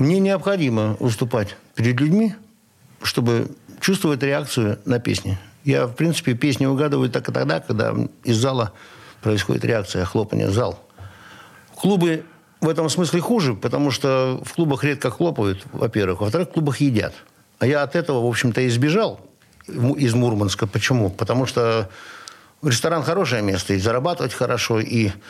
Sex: male